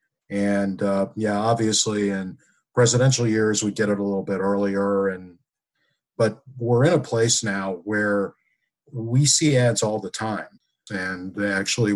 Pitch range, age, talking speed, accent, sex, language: 100-120 Hz, 50-69, 150 wpm, American, male, English